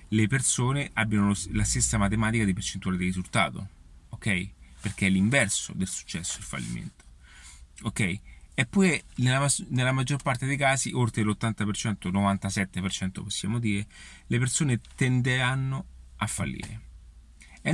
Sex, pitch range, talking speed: male, 95-125 Hz, 135 wpm